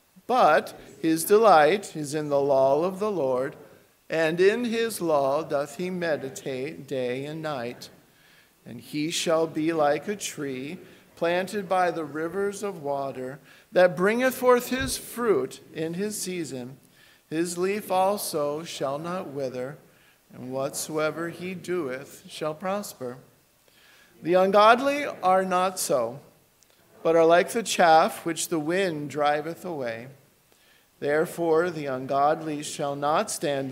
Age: 50-69